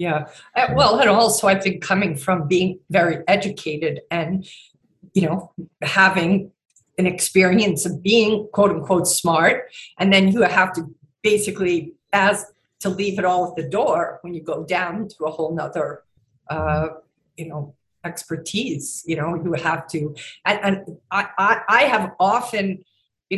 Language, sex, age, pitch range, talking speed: English, female, 50-69, 170-205 Hz, 150 wpm